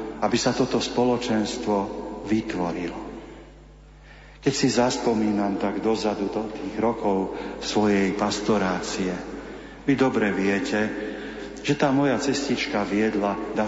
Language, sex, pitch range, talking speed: Slovak, male, 100-120 Hz, 105 wpm